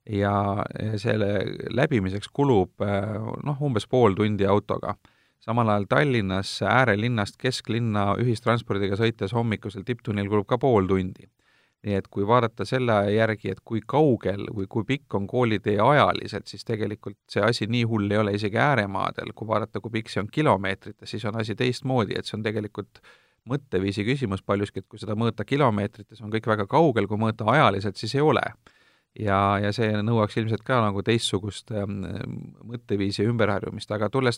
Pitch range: 100-120 Hz